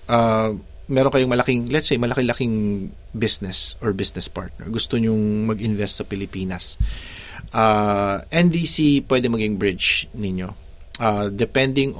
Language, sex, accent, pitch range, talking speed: Filipino, male, native, 95-125 Hz, 125 wpm